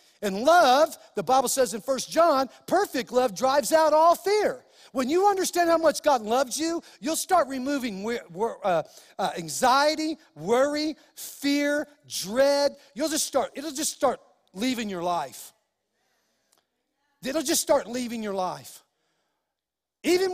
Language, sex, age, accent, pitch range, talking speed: English, male, 40-59, American, 225-300 Hz, 125 wpm